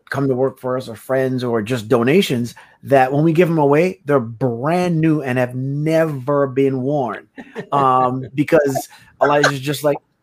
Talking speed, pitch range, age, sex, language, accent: 170 wpm, 140-200 Hz, 30-49, male, English, American